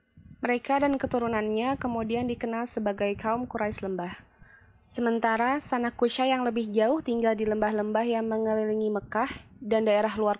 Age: 20-39